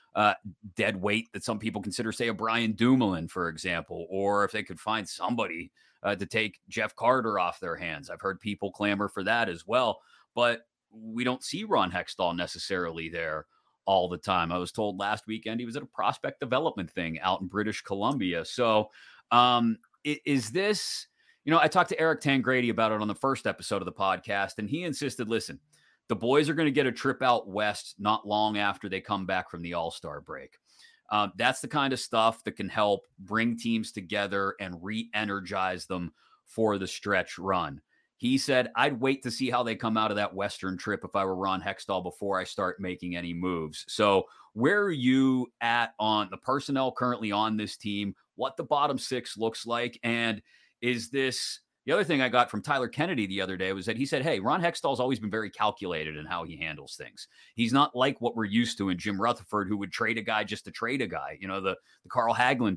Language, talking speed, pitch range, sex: English, 215 wpm, 100-130 Hz, male